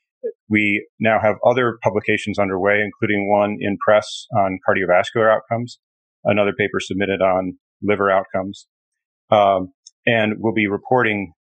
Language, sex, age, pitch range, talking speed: English, male, 40-59, 95-110 Hz, 125 wpm